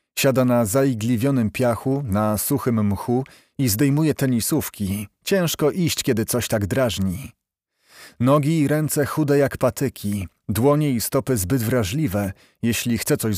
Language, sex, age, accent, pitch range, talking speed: Polish, male, 40-59, native, 115-150 Hz, 135 wpm